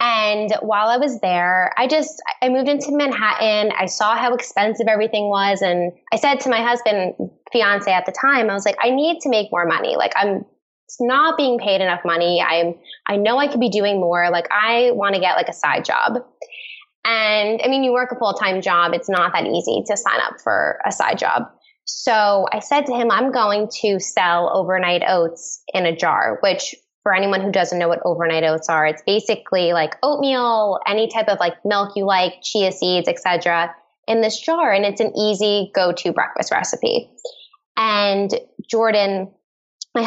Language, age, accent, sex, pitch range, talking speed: English, 10-29, American, female, 185-245 Hz, 195 wpm